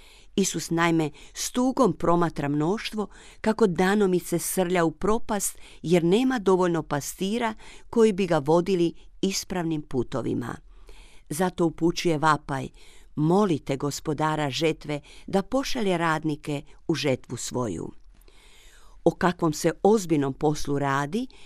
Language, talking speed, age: Croatian, 105 wpm, 50-69